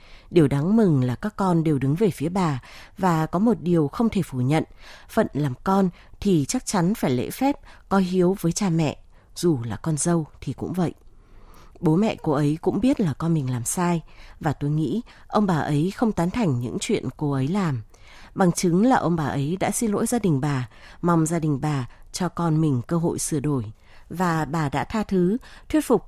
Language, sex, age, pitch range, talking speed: Vietnamese, female, 20-39, 145-200 Hz, 220 wpm